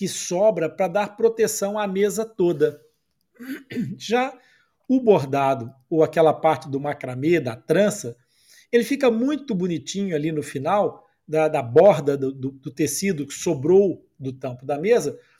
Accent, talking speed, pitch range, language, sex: Brazilian, 150 wpm, 150-225 Hz, Portuguese, male